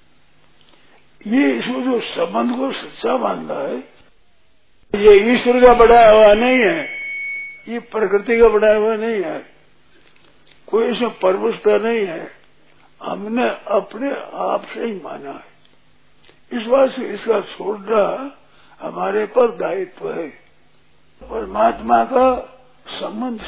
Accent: native